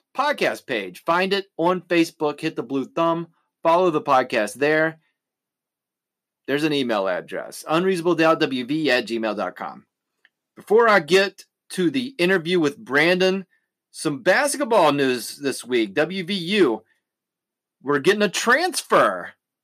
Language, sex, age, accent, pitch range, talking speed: English, male, 30-49, American, 155-220 Hz, 120 wpm